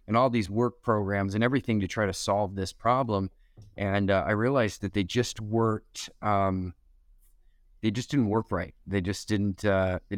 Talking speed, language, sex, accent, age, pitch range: 190 wpm, English, male, American, 20-39, 95-105 Hz